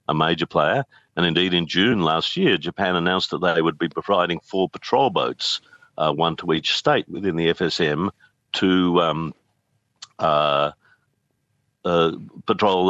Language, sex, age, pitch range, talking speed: English, male, 50-69, 80-100 Hz, 150 wpm